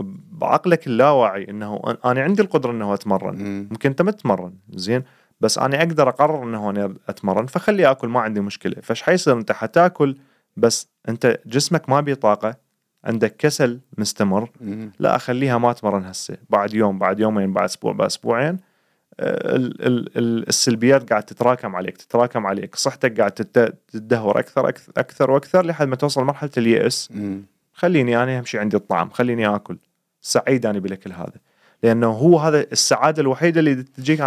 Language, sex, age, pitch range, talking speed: Arabic, male, 30-49, 105-140 Hz, 155 wpm